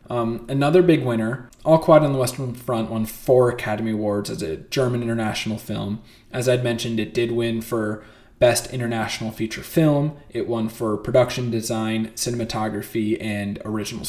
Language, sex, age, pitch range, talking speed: English, male, 20-39, 110-130 Hz, 160 wpm